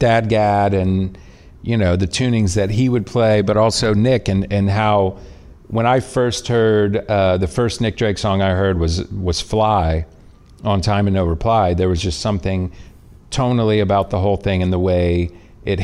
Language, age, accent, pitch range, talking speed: English, 40-59, American, 95-115 Hz, 190 wpm